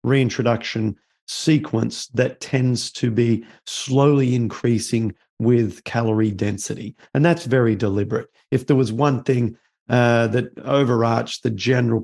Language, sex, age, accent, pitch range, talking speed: English, male, 40-59, Australian, 115-140 Hz, 125 wpm